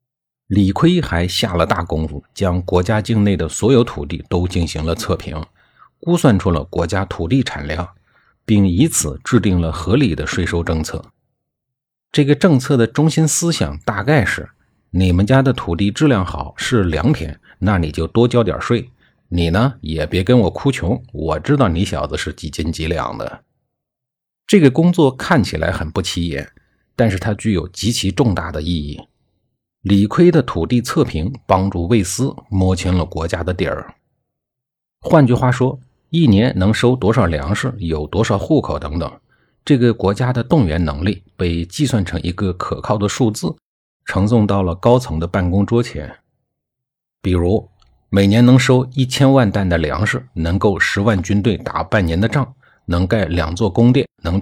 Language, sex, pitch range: Chinese, male, 85-125 Hz